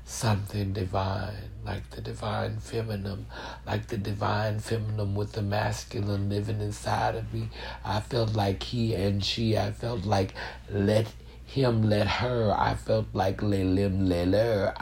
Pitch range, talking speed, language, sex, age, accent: 90-130 Hz, 160 wpm, English, male, 60-79, American